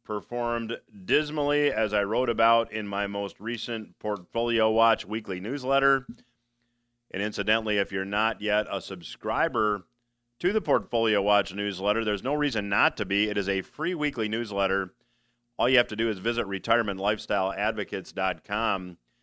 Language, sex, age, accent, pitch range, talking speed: English, male, 40-59, American, 105-120 Hz, 145 wpm